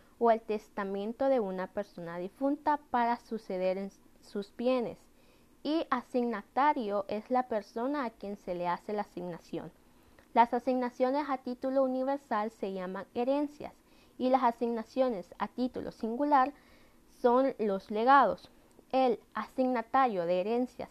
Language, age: Spanish, 20-39